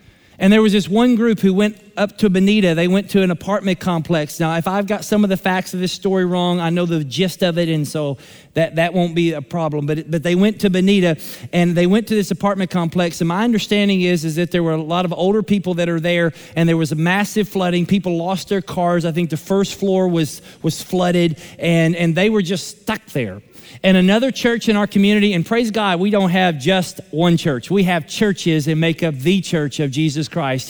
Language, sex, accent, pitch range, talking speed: English, male, American, 175-235 Hz, 240 wpm